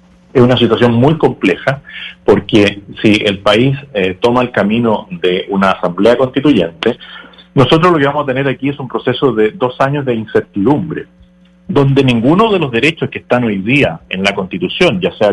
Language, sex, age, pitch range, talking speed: Spanish, male, 40-59, 105-150 Hz, 180 wpm